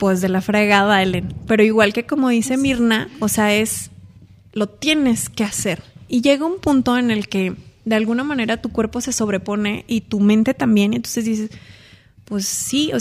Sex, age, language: female, 20-39, Spanish